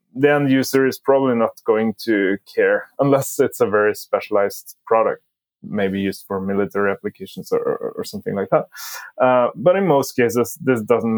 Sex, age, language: male, 20-39, English